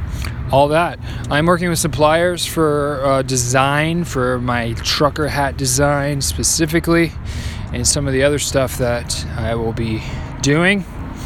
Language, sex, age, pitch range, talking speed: English, male, 20-39, 120-155 Hz, 140 wpm